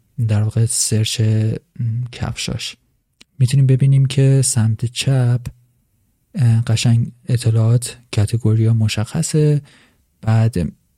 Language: Persian